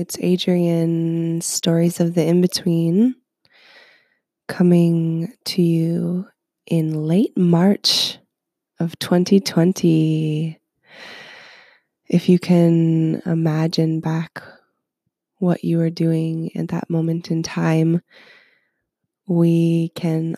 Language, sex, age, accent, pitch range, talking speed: English, female, 20-39, American, 165-185 Hz, 90 wpm